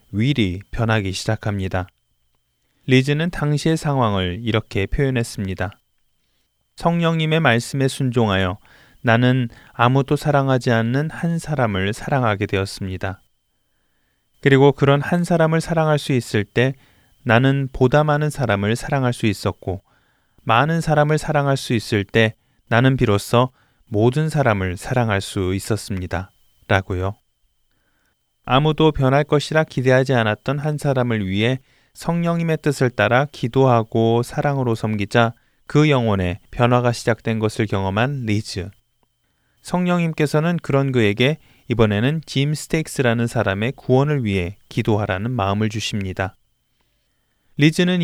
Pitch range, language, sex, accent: 105-145 Hz, Korean, male, native